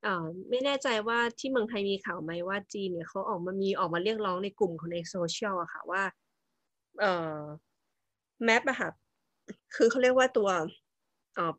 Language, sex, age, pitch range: Thai, female, 20-39, 170-230 Hz